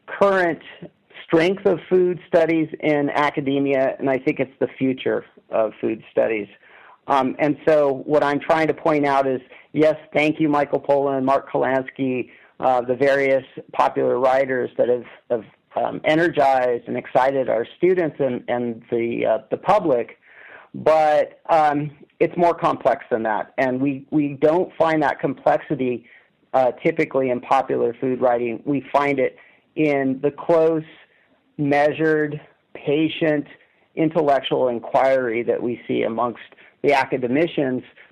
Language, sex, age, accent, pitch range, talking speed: English, male, 40-59, American, 125-155 Hz, 140 wpm